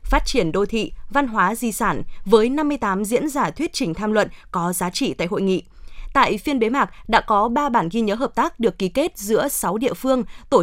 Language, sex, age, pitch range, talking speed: Vietnamese, female, 20-39, 195-270 Hz, 235 wpm